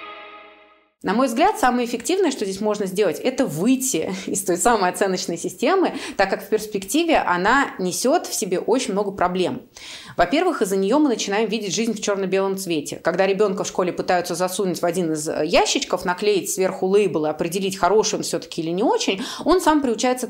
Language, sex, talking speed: Russian, female, 180 wpm